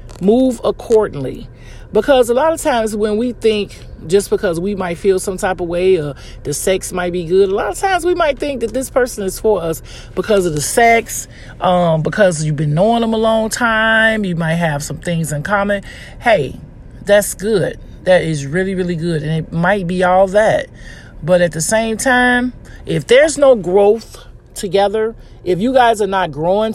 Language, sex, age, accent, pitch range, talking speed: English, male, 40-59, American, 170-220 Hz, 195 wpm